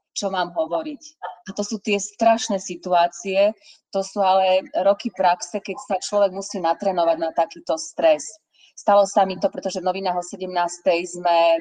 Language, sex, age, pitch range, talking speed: Slovak, female, 30-49, 170-215 Hz, 160 wpm